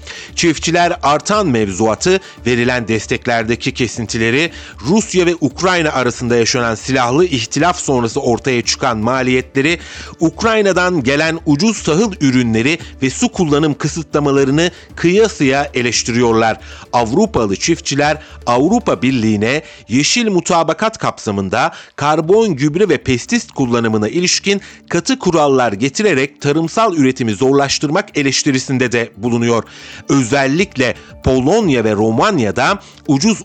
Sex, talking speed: male, 100 wpm